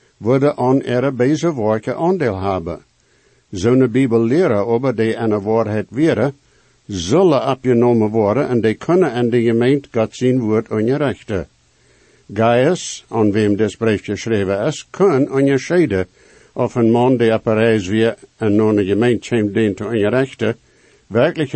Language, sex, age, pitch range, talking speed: English, male, 60-79, 110-135 Hz, 155 wpm